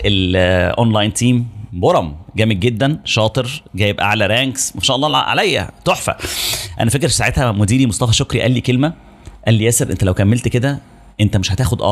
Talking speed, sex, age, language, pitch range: 165 wpm, male, 30-49, Arabic, 105-130 Hz